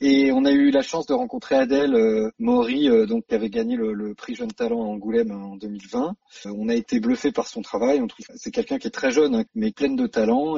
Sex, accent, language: male, French, French